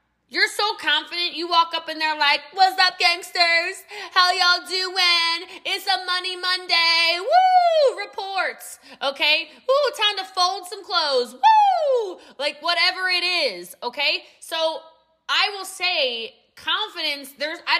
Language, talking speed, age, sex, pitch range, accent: English, 140 wpm, 20-39, female, 270-365 Hz, American